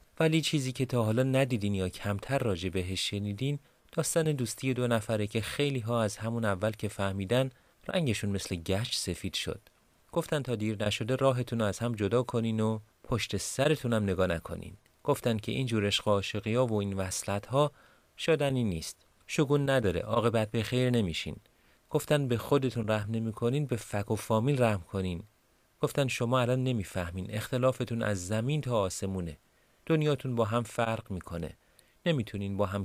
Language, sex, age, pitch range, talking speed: Persian, male, 30-49, 100-130 Hz, 155 wpm